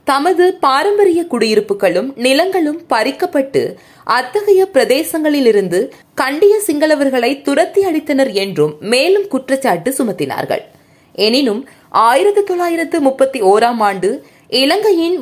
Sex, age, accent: female, 20-39, native